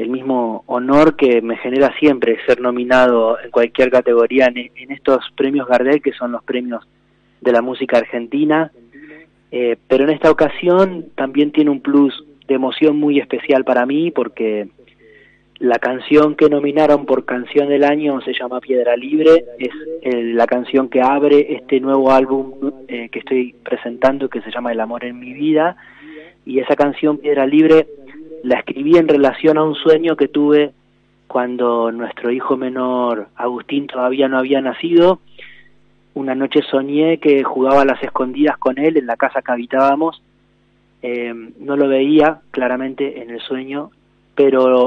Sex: male